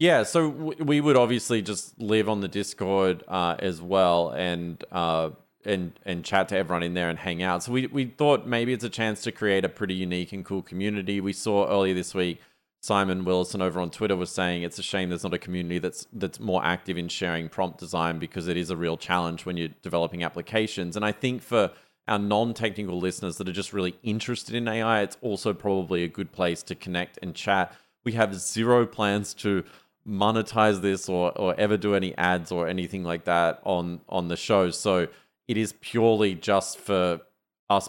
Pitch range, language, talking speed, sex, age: 90-110 Hz, English, 205 wpm, male, 30-49